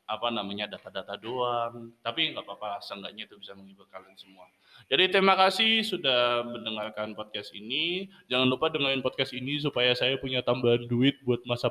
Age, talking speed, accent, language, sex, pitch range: 20-39, 165 wpm, native, Indonesian, male, 135-215 Hz